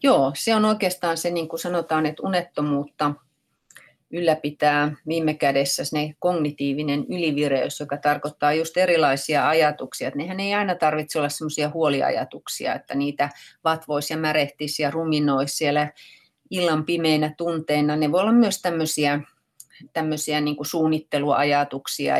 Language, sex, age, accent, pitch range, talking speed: Finnish, female, 30-49, native, 150-185 Hz, 125 wpm